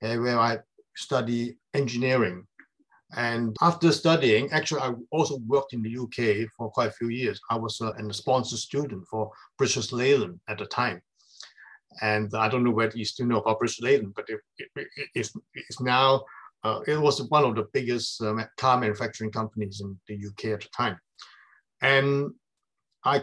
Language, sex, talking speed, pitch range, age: English, male, 175 wpm, 110-135 Hz, 50-69